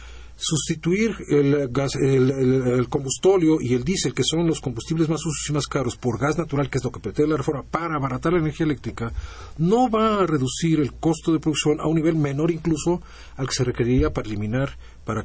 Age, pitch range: 40-59, 125-170 Hz